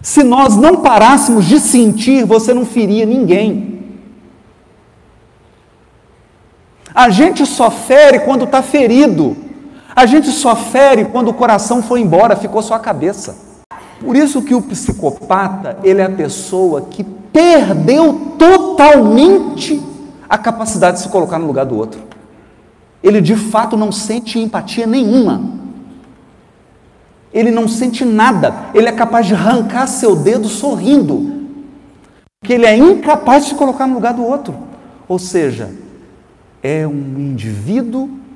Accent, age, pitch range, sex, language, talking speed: Brazilian, 40-59, 180-260 Hz, male, Portuguese, 135 wpm